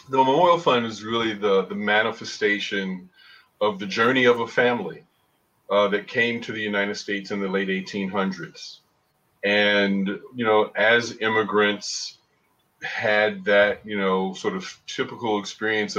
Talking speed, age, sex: 145 wpm, 40-59, male